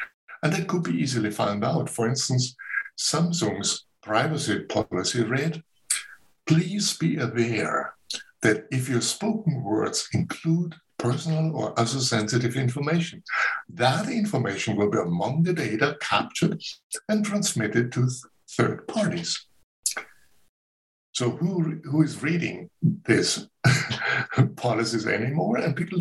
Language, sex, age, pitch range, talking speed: English, male, 60-79, 115-165 Hz, 115 wpm